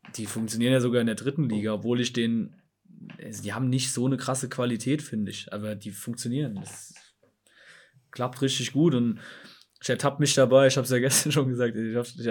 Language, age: German, 20-39